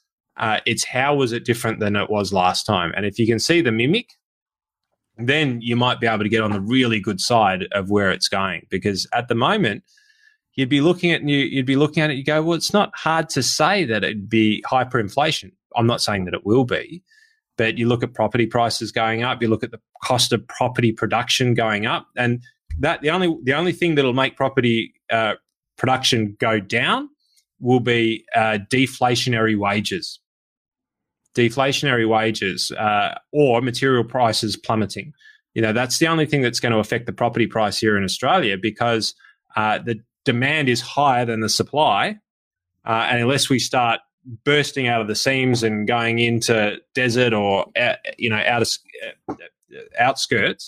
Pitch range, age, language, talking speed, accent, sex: 110-140 Hz, 20-39, English, 185 wpm, Australian, male